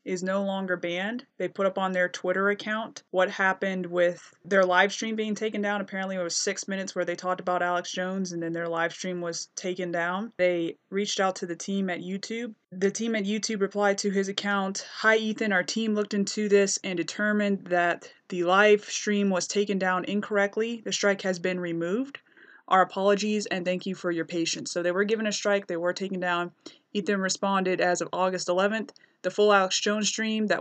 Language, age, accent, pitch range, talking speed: English, 20-39, American, 185-210 Hz, 210 wpm